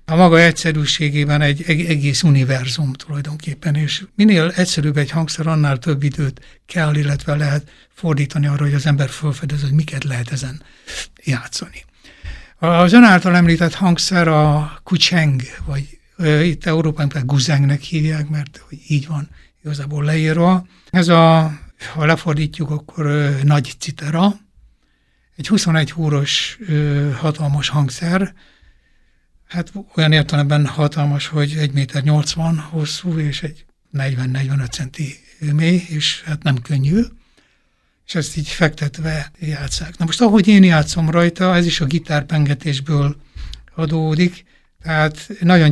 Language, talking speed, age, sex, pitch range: Hungarian, 125 wpm, 60-79, male, 145-165 Hz